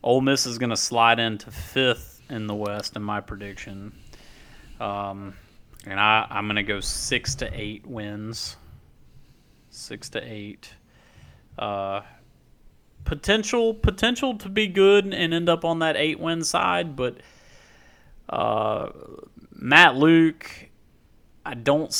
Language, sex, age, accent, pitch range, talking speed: English, male, 30-49, American, 105-150 Hz, 125 wpm